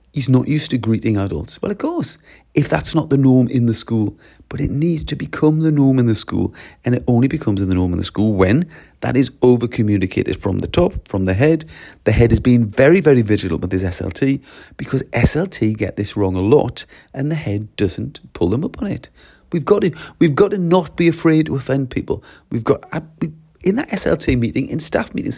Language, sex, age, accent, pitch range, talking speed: English, male, 30-49, British, 100-135 Hz, 220 wpm